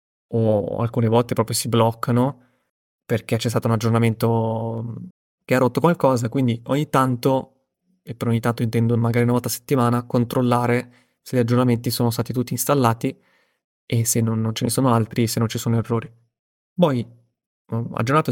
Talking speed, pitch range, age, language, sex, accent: 165 wpm, 115-135 Hz, 20-39, Italian, male, native